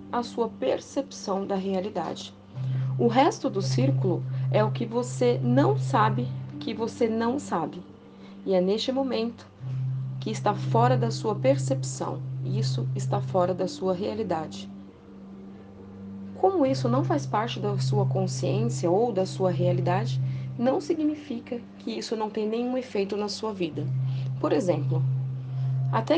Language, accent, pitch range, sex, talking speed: Portuguese, Brazilian, 125-195 Hz, female, 140 wpm